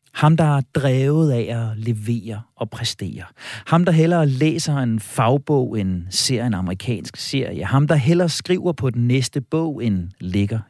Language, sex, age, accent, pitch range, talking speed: Danish, male, 40-59, native, 110-155 Hz, 170 wpm